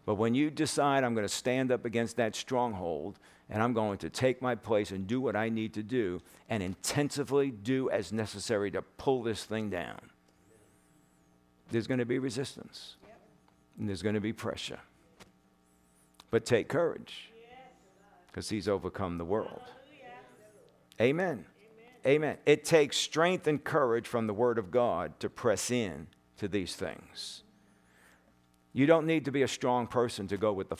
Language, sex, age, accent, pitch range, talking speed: English, male, 50-69, American, 95-140 Hz, 165 wpm